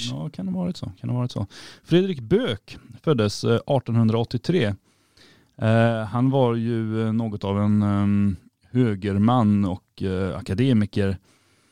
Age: 30-49